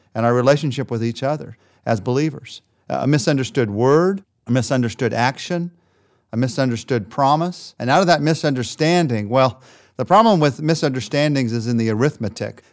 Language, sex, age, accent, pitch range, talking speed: English, male, 40-59, American, 115-150 Hz, 145 wpm